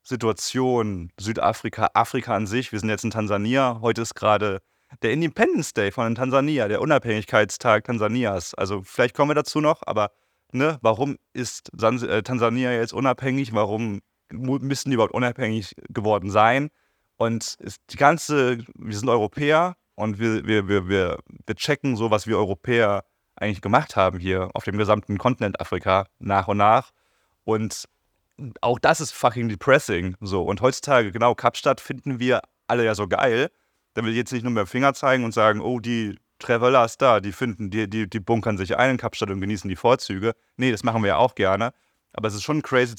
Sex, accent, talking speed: male, German, 180 wpm